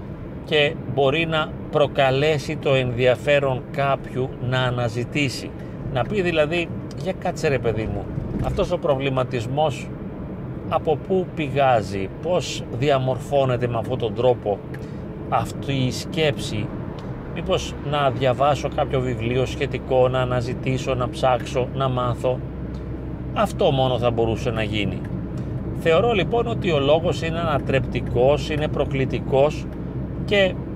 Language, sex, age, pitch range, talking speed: Greek, male, 40-59, 125-155 Hz, 115 wpm